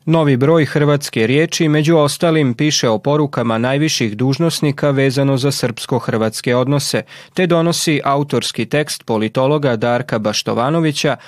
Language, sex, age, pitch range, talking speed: Croatian, male, 30-49, 120-150 Hz, 115 wpm